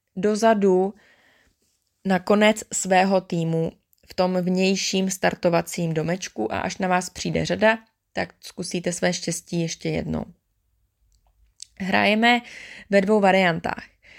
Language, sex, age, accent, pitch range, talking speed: Czech, female, 20-39, native, 170-210 Hz, 110 wpm